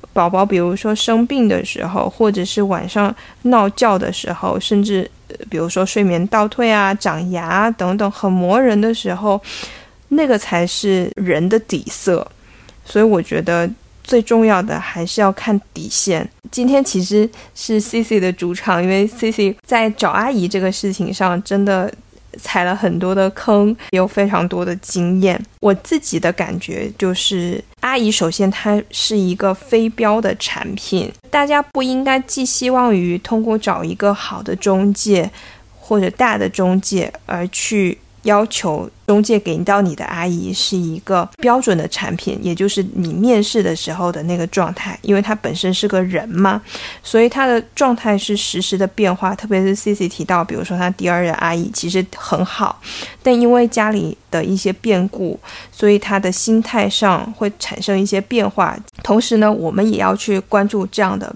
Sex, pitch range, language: female, 185-220 Hz, Chinese